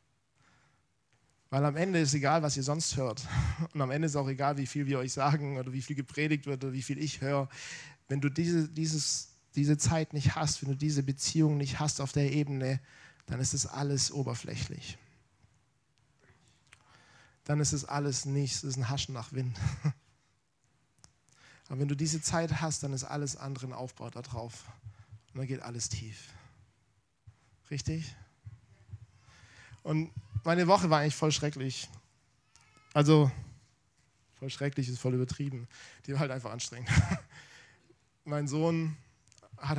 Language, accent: German, German